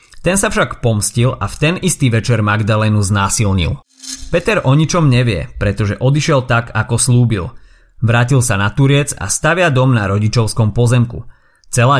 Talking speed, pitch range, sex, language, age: 155 wpm, 110-135 Hz, male, Slovak, 30-49